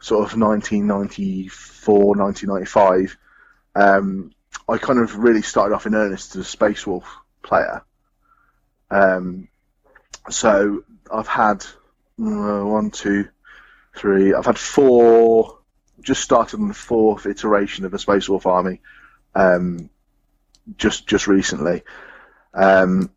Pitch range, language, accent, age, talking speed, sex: 95-105 Hz, English, British, 30-49, 115 wpm, male